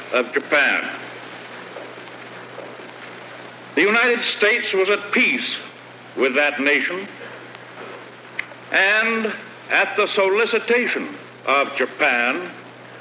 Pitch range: 185-225 Hz